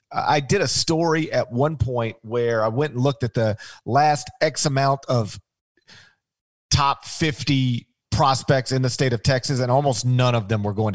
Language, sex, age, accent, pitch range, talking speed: English, male, 40-59, American, 115-150 Hz, 180 wpm